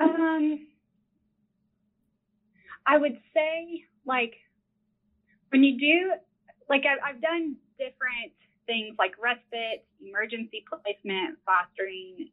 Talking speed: 90 wpm